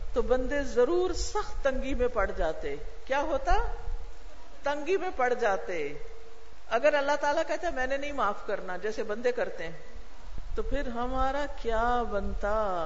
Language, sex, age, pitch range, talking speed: Urdu, female, 50-69, 220-310 Hz, 150 wpm